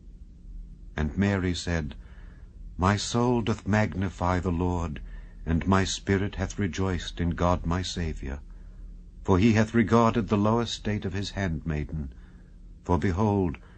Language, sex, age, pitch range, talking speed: English, male, 60-79, 80-100 Hz, 130 wpm